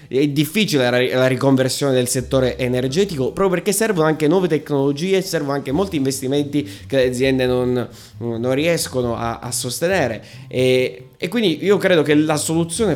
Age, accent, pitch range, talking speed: 20-39, native, 125-155 Hz, 155 wpm